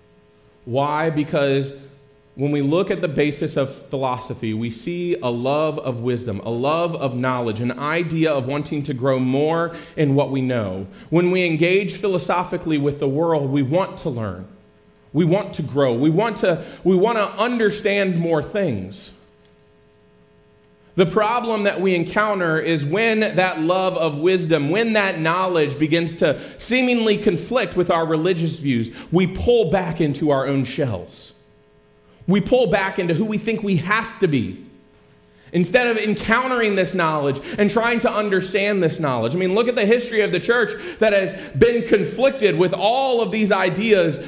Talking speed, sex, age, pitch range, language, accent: 170 wpm, male, 30-49, 140-205 Hz, English, American